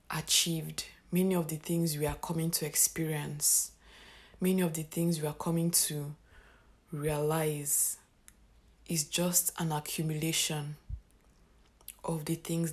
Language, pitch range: English, 150-170 Hz